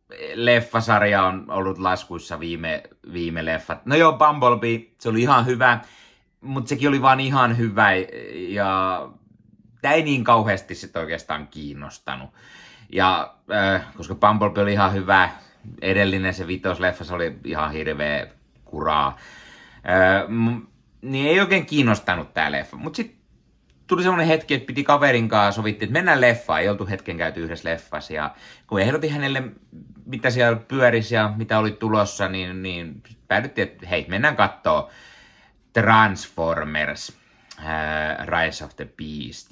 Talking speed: 140 wpm